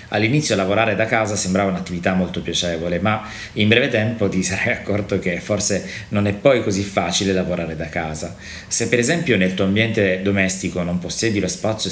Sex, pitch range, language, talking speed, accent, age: male, 95-110 Hz, Italian, 180 wpm, native, 30-49